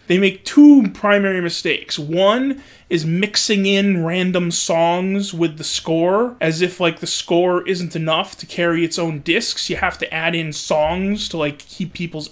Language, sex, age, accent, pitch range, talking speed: English, male, 30-49, American, 170-220 Hz, 175 wpm